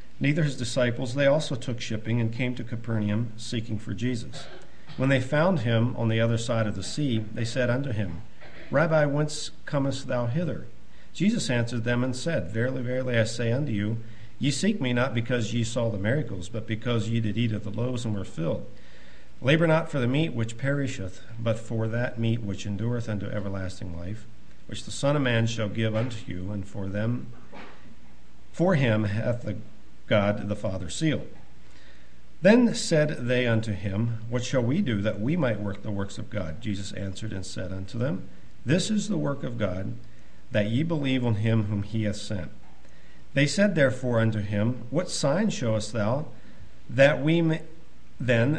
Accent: American